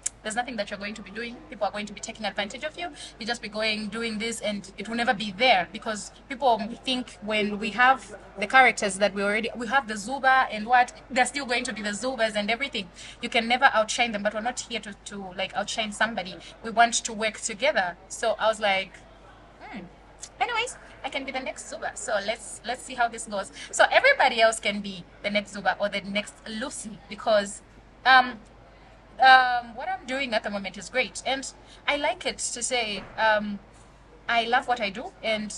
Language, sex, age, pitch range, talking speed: English, female, 20-39, 210-260 Hz, 220 wpm